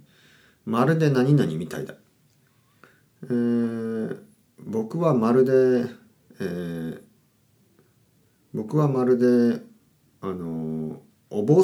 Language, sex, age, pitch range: Japanese, male, 40-59, 100-160 Hz